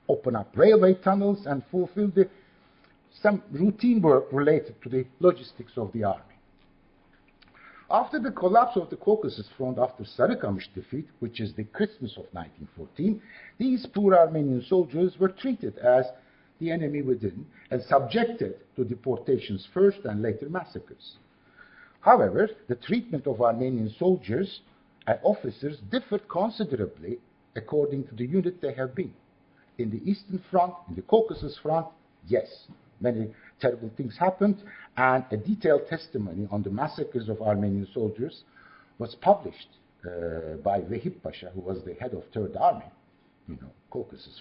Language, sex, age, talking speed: English, male, 60-79, 145 wpm